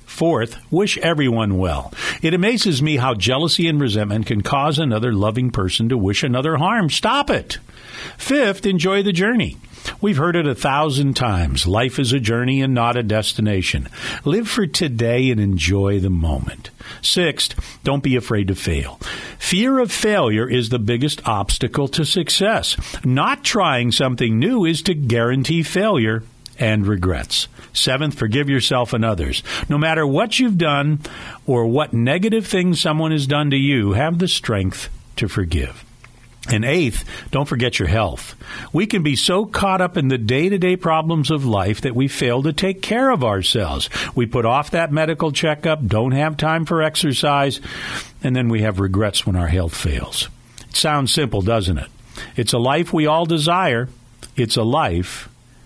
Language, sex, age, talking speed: English, male, 50-69, 170 wpm